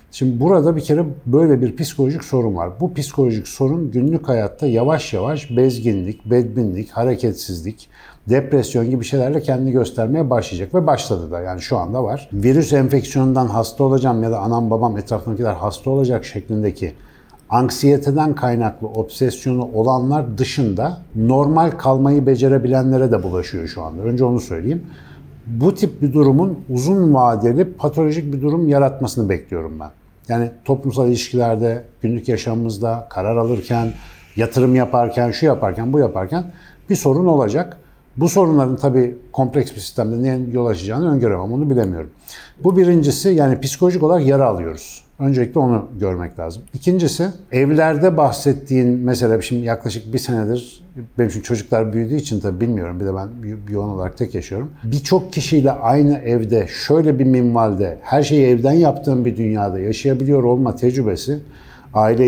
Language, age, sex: Turkish, 60-79, male